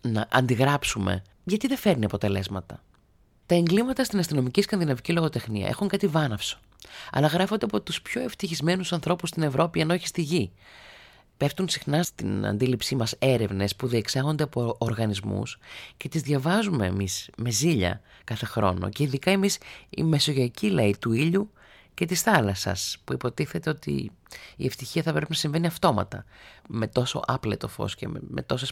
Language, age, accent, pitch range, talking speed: Greek, 30-49, native, 105-170 Hz, 150 wpm